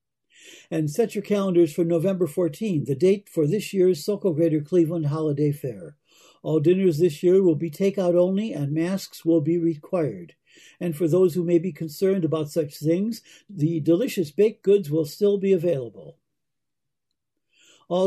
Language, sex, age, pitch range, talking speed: English, male, 60-79, 155-195 Hz, 165 wpm